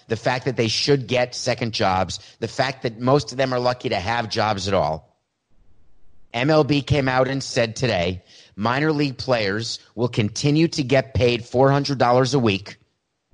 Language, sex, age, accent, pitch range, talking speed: English, male, 30-49, American, 105-135 Hz, 170 wpm